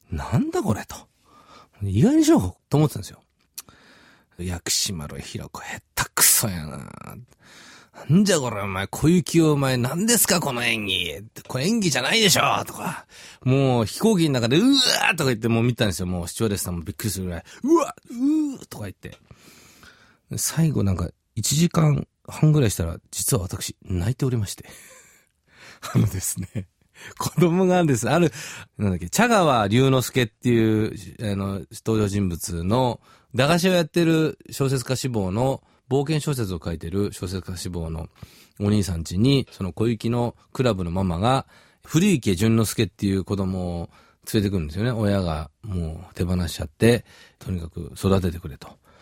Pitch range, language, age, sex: 95-135 Hz, Japanese, 40-59, male